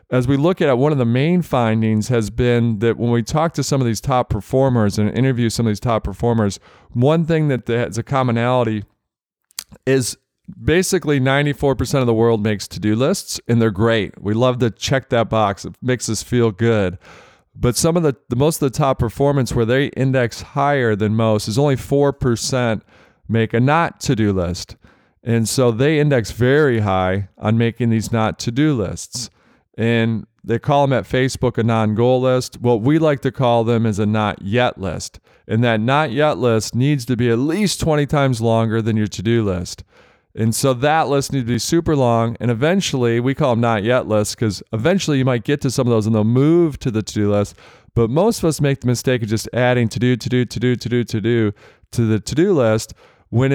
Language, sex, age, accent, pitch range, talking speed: English, male, 40-59, American, 110-135 Hz, 205 wpm